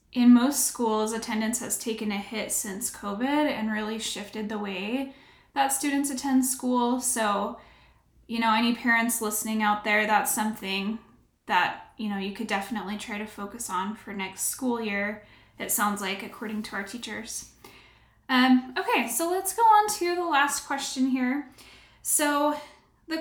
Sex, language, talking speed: female, English, 165 wpm